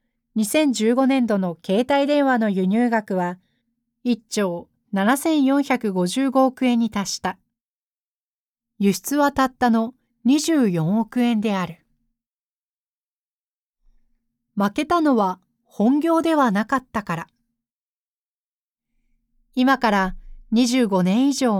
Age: 40-59